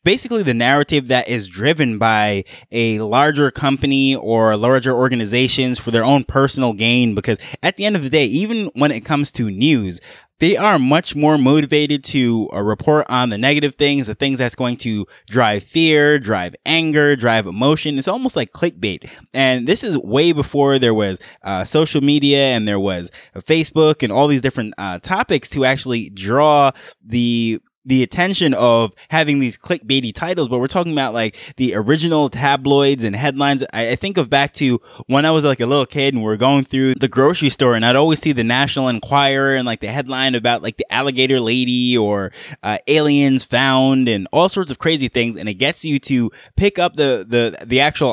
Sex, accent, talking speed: male, American, 195 wpm